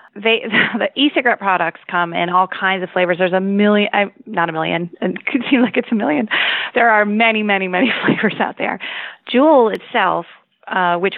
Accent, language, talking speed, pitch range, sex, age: American, English, 195 wpm, 170-220 Hz, female, 30-49